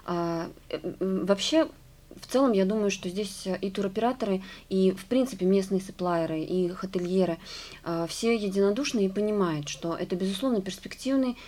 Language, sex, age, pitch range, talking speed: Russian, female, 20-39, 175-210 Hz, 130 wpm